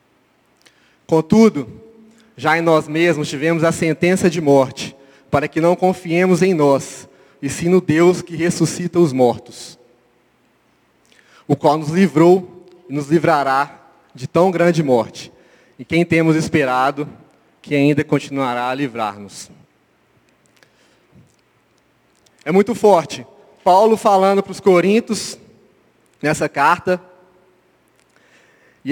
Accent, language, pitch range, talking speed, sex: Brazilian, Portuguese, 155-205 Hz, 115 wpm, male